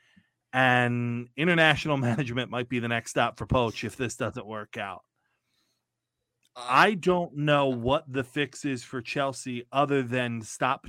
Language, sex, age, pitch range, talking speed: English, male, 30-49, 125-165 Hz, 150 wpm